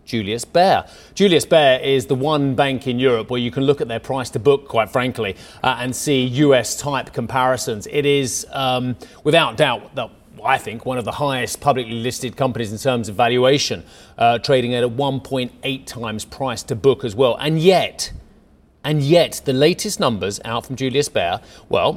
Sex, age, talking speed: male, 30-49, 190 wpm